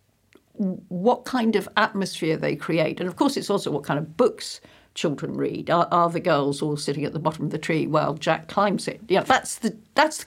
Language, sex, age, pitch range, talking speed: English, female, 60-79, 165-235 Hz, 220 wpm